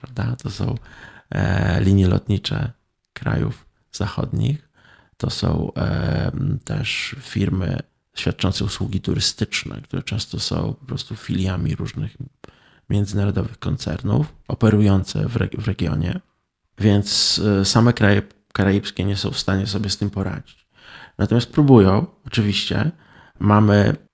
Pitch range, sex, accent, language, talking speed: 95-115 Hz, male, native, Polish, 100 wpm